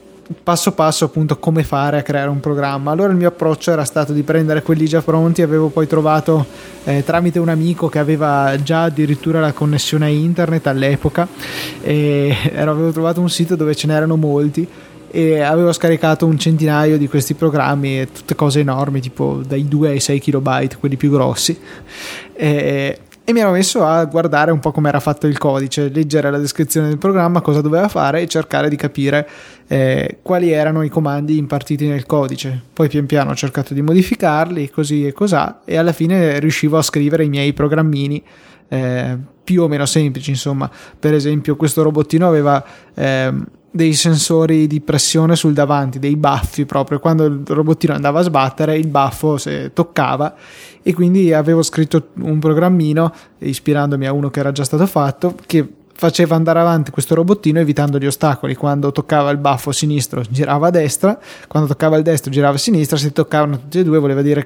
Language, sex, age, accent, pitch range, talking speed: Italian, male, 20-39, native, 145-160 Hz, 180 wpm